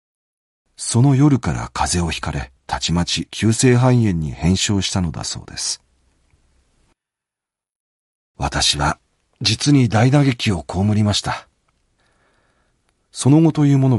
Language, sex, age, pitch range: Japanese, male, 40-59, 90-130 Hz